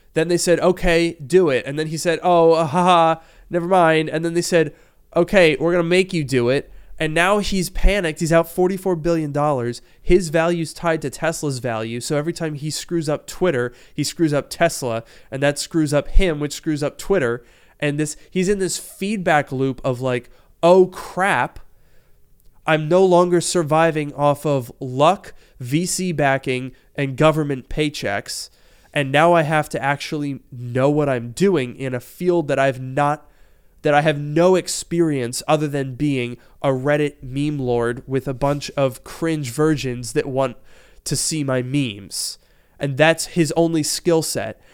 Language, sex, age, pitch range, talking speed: English, male, 20-39, 135-170 Hz, 175 wpm